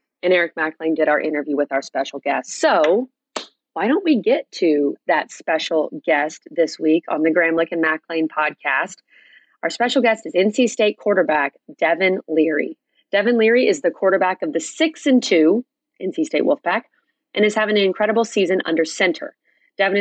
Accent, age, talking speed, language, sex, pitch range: American, 30-49, 175 wpm, English, female, 165-235 Hz